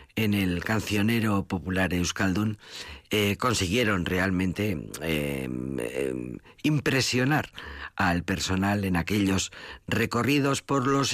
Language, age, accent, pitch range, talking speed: Spanish, 50-69, Spanish, 85-120 Hz, 90 wpm